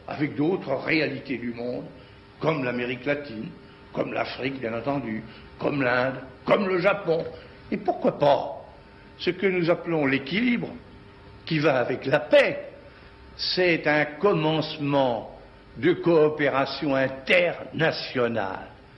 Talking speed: 115 wpm